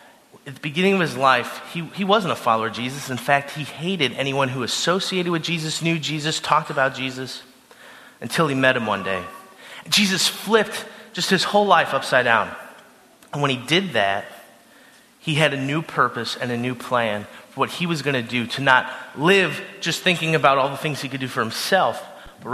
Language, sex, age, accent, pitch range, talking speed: English, male, 30-49, American, 130-190 Hz, 205 wpm